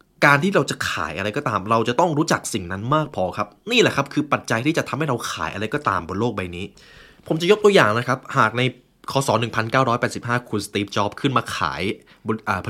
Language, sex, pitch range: Thai, male, 110-155 Hz